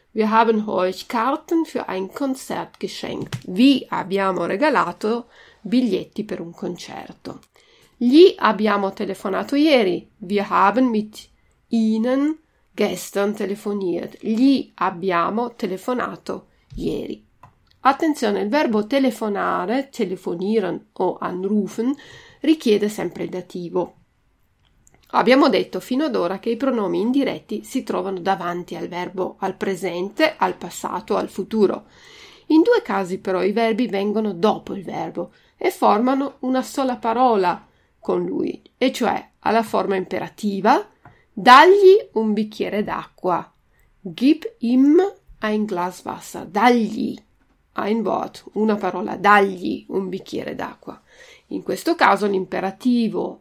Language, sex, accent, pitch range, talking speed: Italian, female, native, 195-260 Hz, 115 wpm